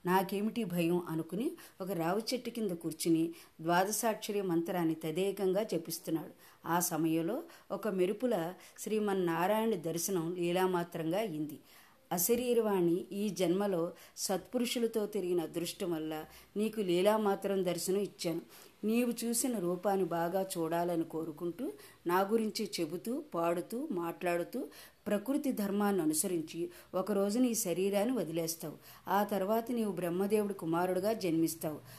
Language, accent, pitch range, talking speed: Telugu, native, 170-210 Hz, 105 wpm